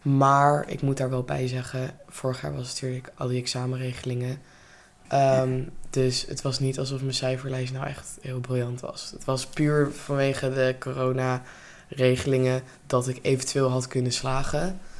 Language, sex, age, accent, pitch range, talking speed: Dutch, female, 20-39, Dutch, 130-155 Hz, 155 wpm